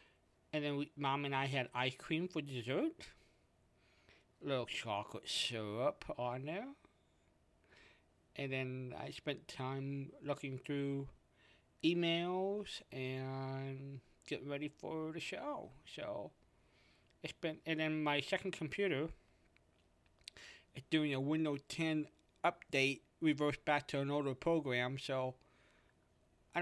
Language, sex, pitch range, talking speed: English, male, 120-155 Hz, 115 wpm